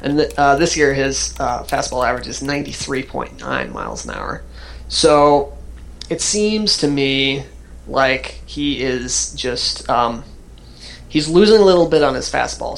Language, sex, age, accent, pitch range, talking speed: English, male, 30-49, American, 130-160 Hz, 145 wpm